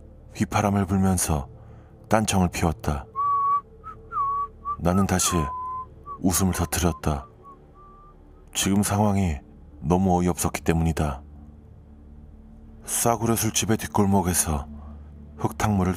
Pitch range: 75-95 Hz